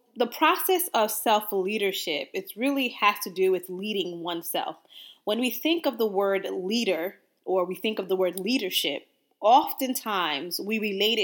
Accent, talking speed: American, 155 wpm